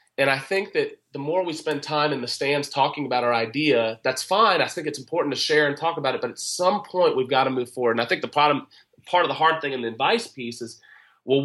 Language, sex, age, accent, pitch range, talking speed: English, male, 30-49, American, 125-160 Hz, 285 wpm